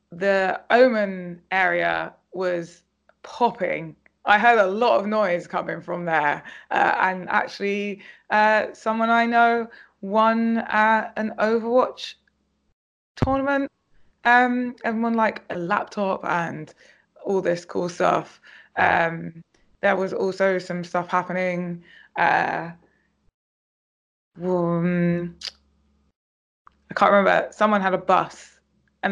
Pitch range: 180-235 Hz